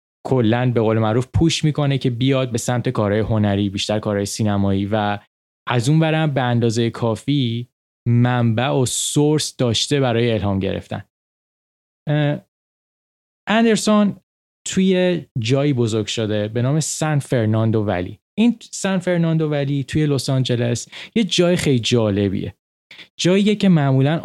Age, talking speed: 20-39, 130 wpm